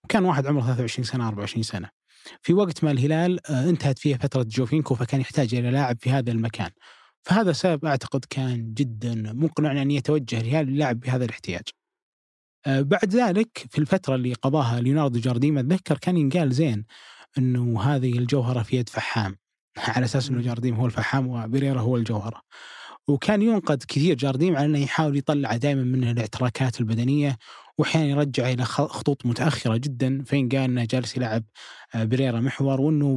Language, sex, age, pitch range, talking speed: Arabic, male, 20-39, 125-150 Hz, 155 wpm